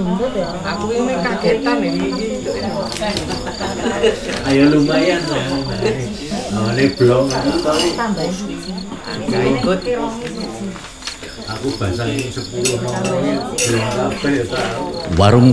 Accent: Indonesian